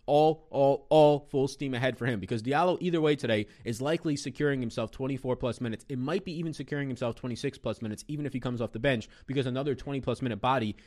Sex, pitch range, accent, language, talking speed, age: male, 115-165 Hz, American, English, 230 wpm, 20-39